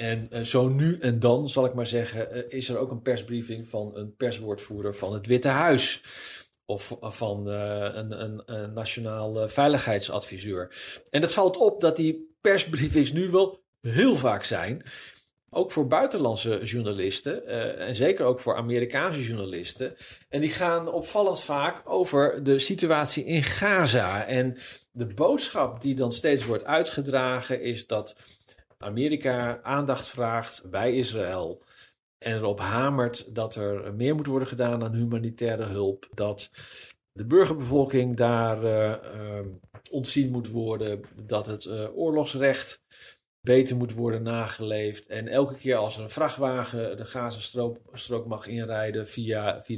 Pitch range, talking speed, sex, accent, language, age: 110-140 Hz, 135 wpm, male, Dutch, Dutch, 40-59